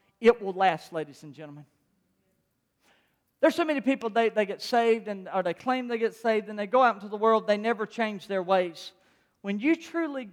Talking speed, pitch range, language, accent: 210 wpm, 230-330 Hz, English, American